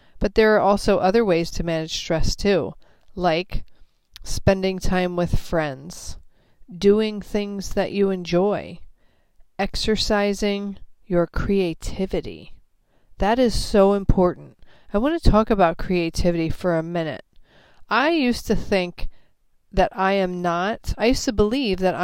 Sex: female